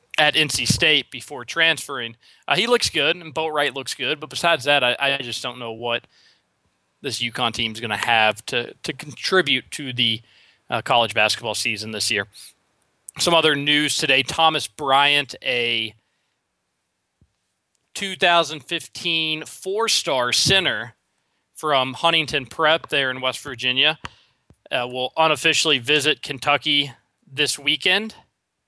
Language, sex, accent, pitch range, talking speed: English, male, American, 120-155 Hz, 135 wpm